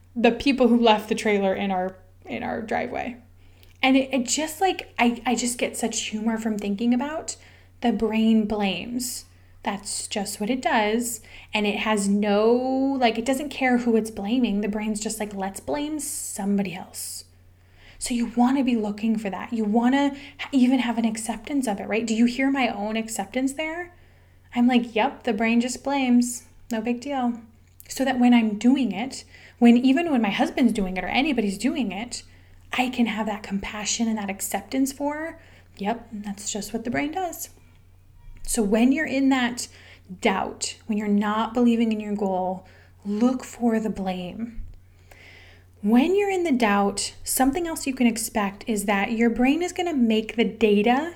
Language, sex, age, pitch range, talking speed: English, female, 10-29, 200-250 Hz, 185 wpm